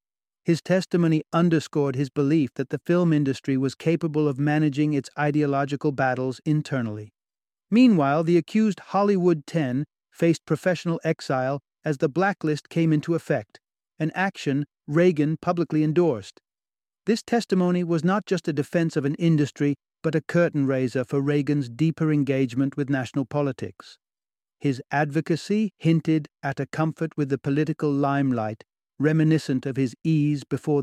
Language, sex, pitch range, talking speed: English, male, 135-165 Hz, 140 wpm